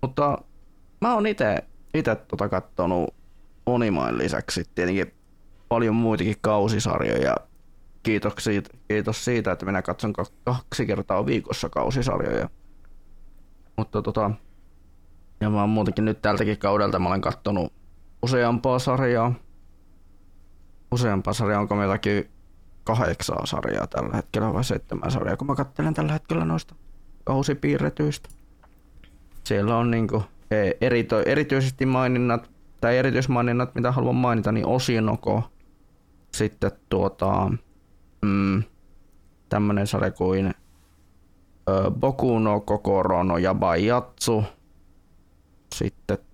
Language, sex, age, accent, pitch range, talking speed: Finnish, male, 20-39, native, 85-115 Hz, 105 wpm